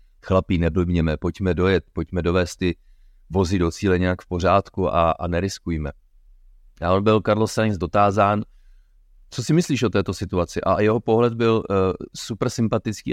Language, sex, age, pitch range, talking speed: Czech, male, 30-49, 85-110 Hz, 155 wpm